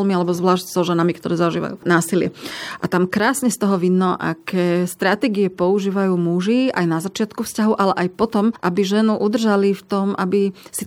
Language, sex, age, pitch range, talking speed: Slovak, female, 30-49, 185-225 Hz, 170 wpm